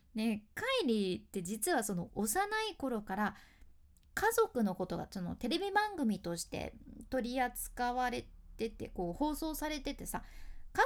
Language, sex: Japanese, female